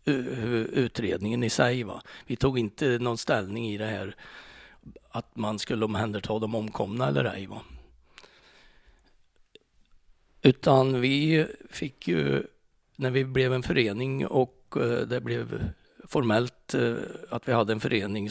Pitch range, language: 105-125 Hz, Swedish